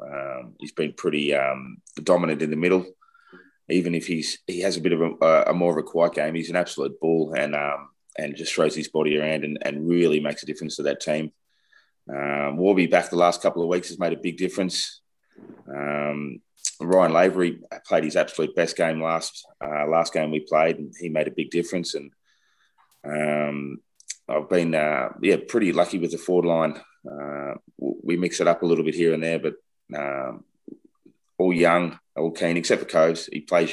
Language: English